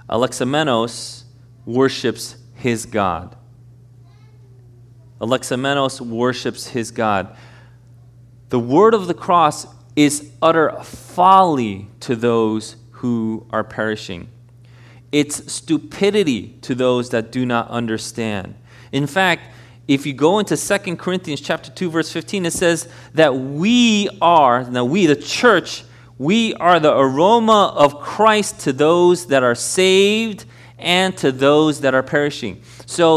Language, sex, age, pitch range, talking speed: English, male, 30-49, 120-160 Hz, 125 wpm